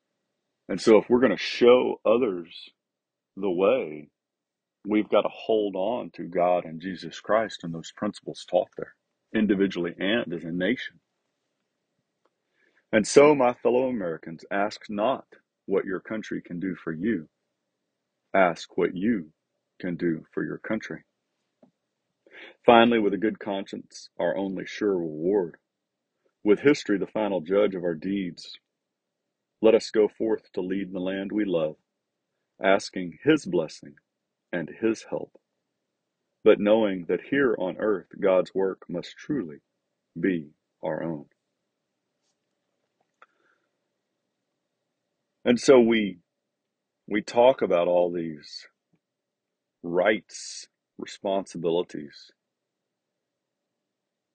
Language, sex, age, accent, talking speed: English, male, 40-59, American, 120 wpm